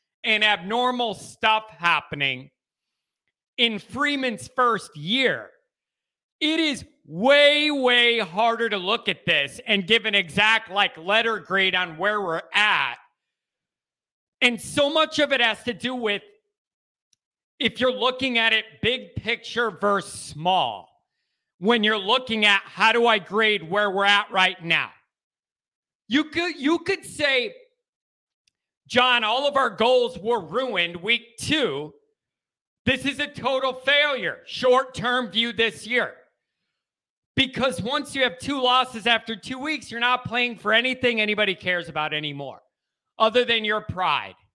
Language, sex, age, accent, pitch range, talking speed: English, male, 40-59, American, 205-260 Hz, 140 wpm